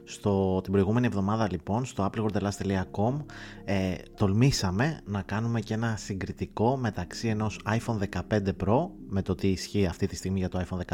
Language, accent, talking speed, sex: Greek, native, 160 wpm, male